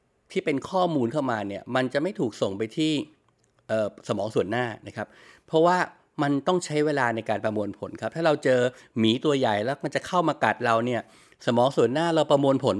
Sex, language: male, Thai